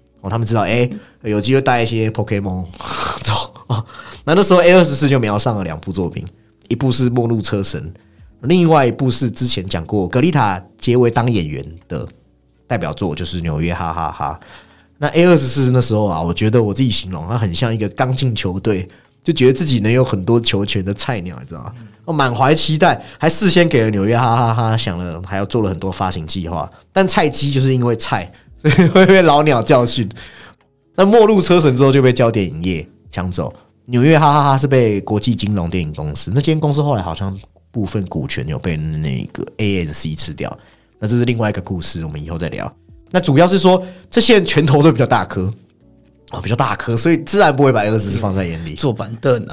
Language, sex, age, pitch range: Chinese, male, 30-49, 95-135 Hz